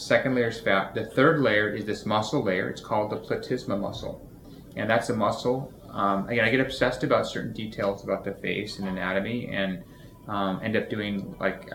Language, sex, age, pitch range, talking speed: English, male, 30-49, 105-130 Hz, 200 wpm